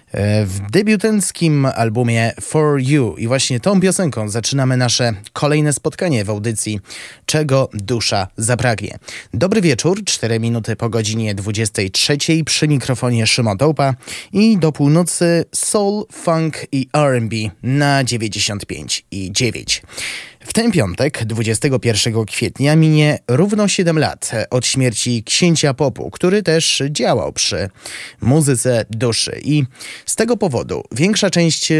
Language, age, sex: Polish, 20-39, male